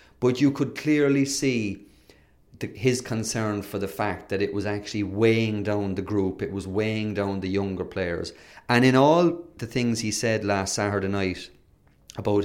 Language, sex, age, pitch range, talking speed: English, male, 30-49, 95-115 Hz, 175 wpm